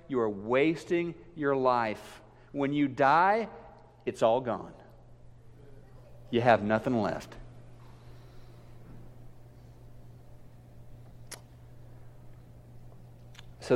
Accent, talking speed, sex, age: American, 70 wpm, male, 40-59